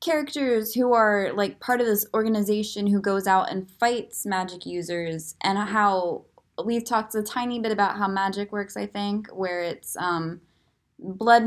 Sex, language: female, English